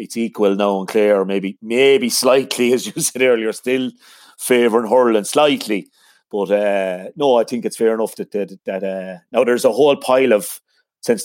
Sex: male